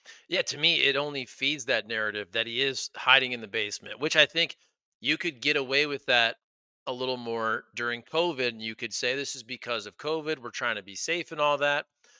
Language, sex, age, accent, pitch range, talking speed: English, male, 30-49, American, 120-160 Hz, 225 wpm